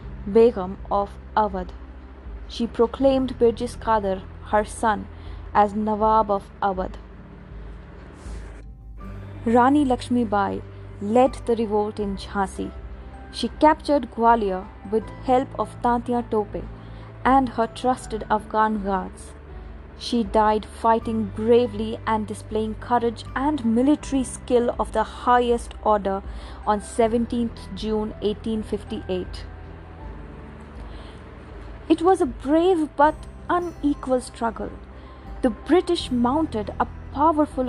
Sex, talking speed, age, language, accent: female, 100 wpm, 20-39, English, Indian